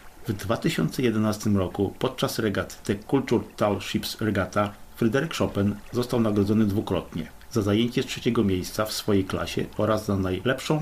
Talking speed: 145 wpm